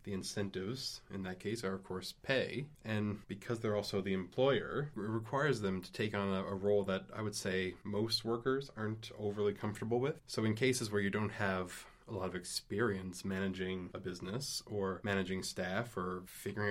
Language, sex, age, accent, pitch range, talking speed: English, male, 20-39, American, 95-115 Hz, 190 wpm